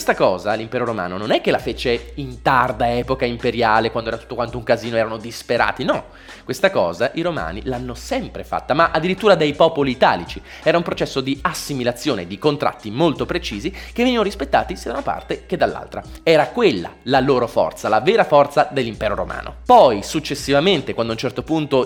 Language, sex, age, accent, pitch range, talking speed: Italian, male, 20-39, native, 115-155 Hz, 190 wpm